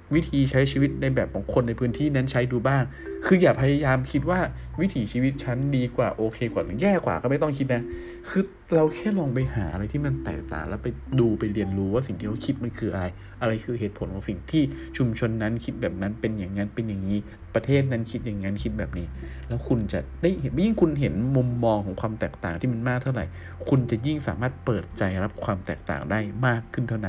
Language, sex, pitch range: Thai, male, 100-130 Hz